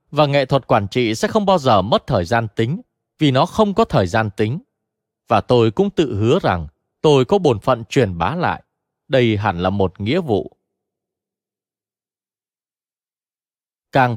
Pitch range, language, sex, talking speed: 105-155 Hz, Vietnamese, male, 170 wpm